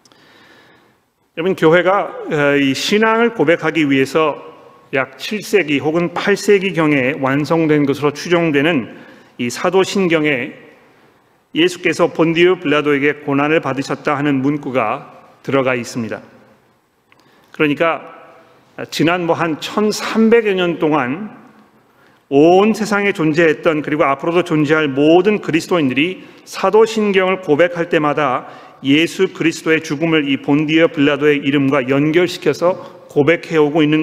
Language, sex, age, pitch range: Korean, male, 40-59, 140-180 Hz